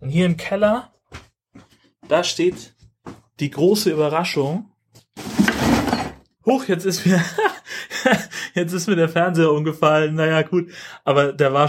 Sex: male